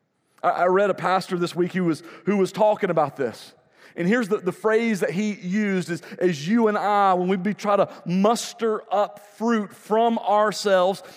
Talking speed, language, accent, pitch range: 195 wpm, English, American, 175-215 Hz